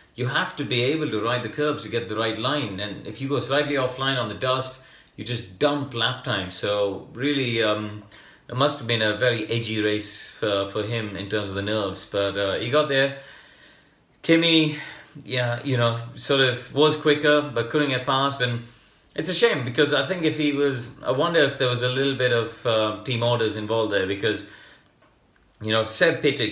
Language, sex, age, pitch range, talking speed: English, male, 30-49, 105-140 Hz, 210 wpm